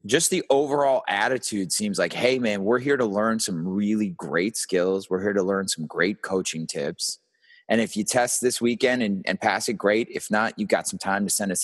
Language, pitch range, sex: English, 105-165 Hz, male